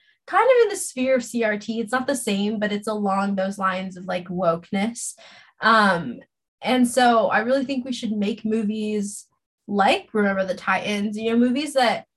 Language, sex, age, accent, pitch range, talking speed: English, female, 20-39, American, 195-230 Hz, 180 wpm